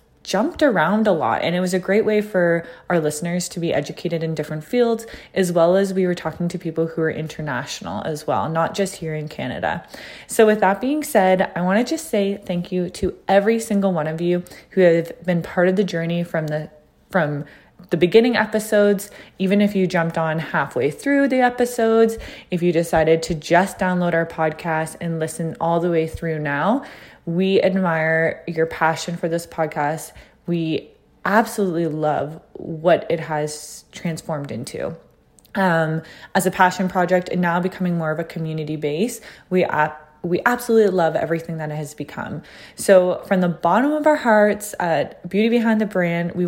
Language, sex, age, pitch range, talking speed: English, female, 20-39, 160-200 Hz, 185 wpm